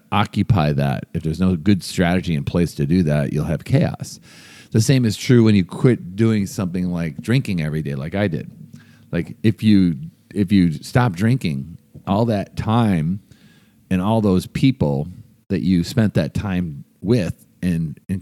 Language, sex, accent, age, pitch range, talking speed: English, male, American, 40-59, 80-105 Hz, 175 wpm